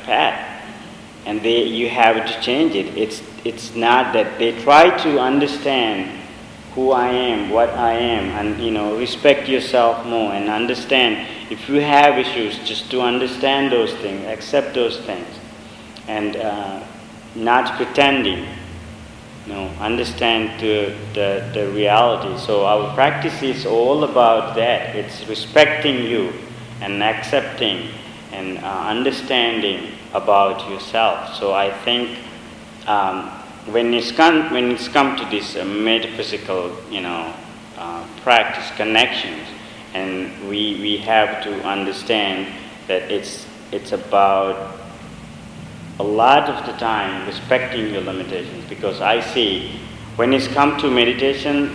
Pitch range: 105-125 Hz